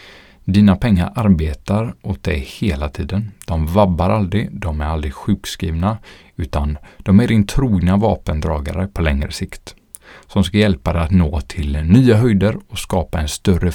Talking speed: 155 wpm